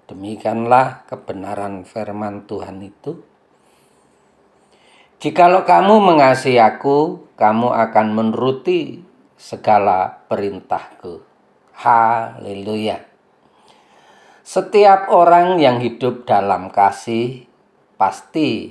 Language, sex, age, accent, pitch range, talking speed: Indonesian, male, 40-59, native, 105-140 Hz, 70 wpm